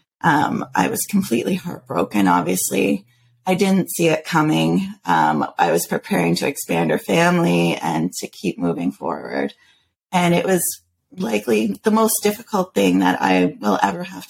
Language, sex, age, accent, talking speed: English, female, 30-49, American, 155 wpm